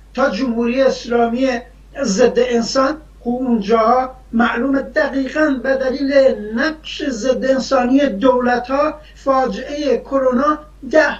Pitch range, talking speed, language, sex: 230-270 Hz, 100 wpm, Persian, male